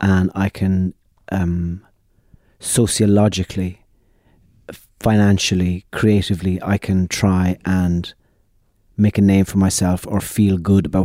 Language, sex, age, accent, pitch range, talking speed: English, male, 30-49, British, 95-105 Hz, 110 wpm